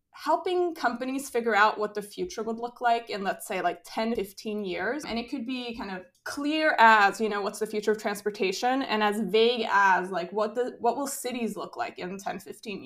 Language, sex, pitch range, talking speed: English, female, 210-245 Hz, 210 wpm